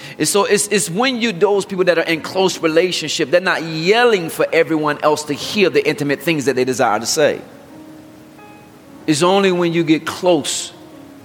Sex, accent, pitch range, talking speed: male, American, 140-185 Hz, 185 wpm